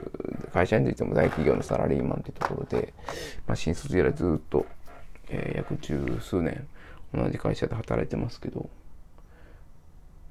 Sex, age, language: male, 20-39, Japanese